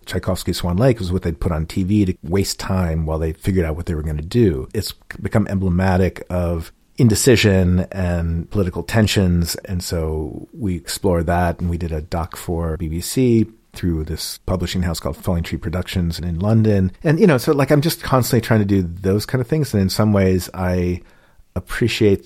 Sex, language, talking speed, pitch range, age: male, English, 195 wpm, 85-100 Hz, 40-59